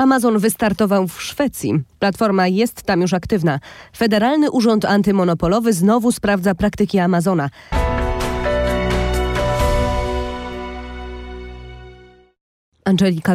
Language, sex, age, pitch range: Polish, female, 20-39, 175-225 Hz